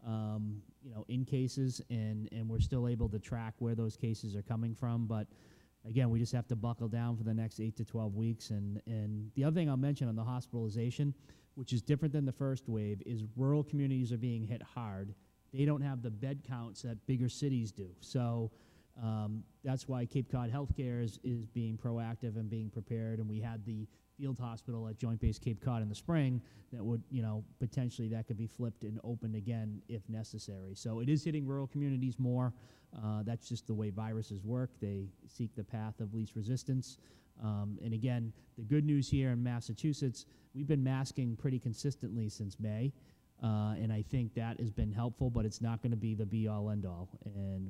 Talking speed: 210 wpm